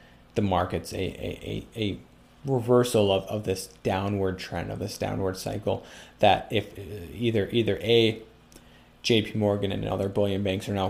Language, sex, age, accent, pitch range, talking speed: English, male, 30-49, American, 95-115 Hz, 155 wpm